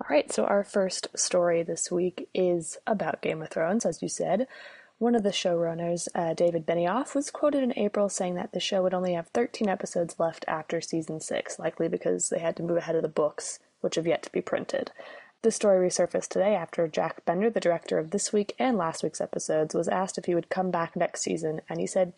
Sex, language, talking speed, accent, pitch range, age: female, English, 225 wpm, American, 160-190 Hz, 20-39